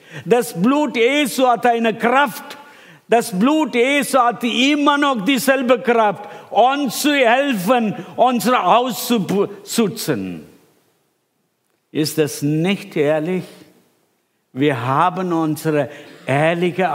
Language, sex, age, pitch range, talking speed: German, male, 60-79, 155-225 Hz, 95 wpm